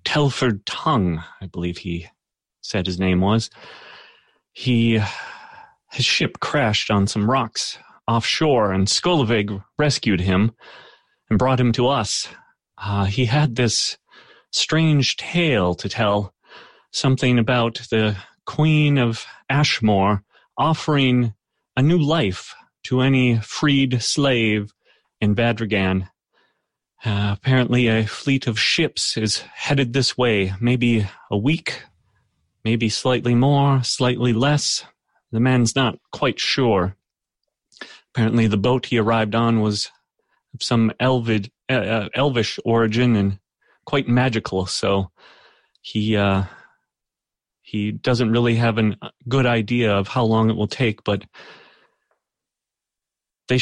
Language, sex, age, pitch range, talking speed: English, male, 30-49, 105-130 Hz, 120 wpm